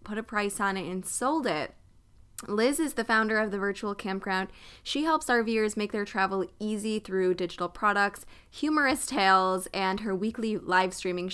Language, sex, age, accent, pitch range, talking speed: English, female, 20-39, American, 185-230 Hz, 175 wpm